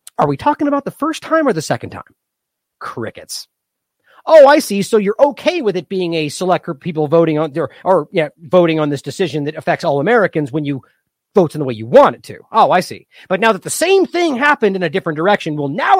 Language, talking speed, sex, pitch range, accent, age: English, 245 wpm, male, 155-250 Hz, American, 40-59